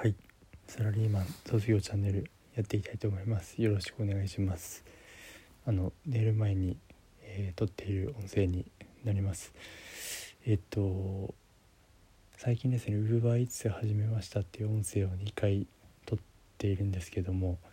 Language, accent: Japanese, native